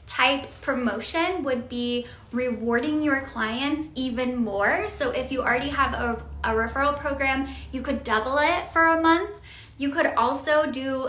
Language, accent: English, American